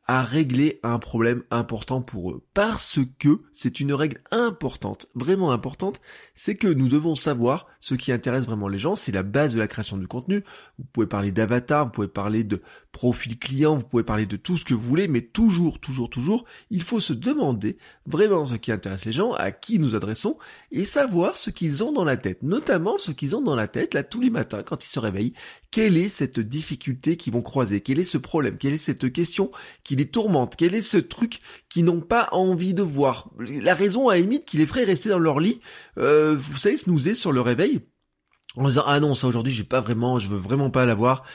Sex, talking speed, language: male, 225 wpm, French